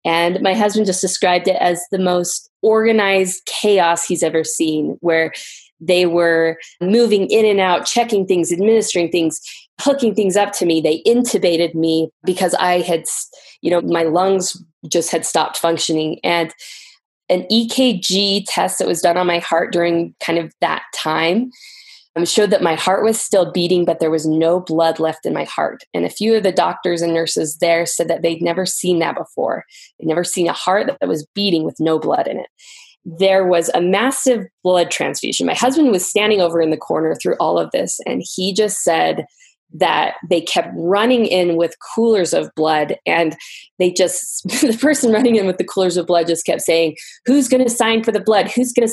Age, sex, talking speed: 20-39, female, 195 wpm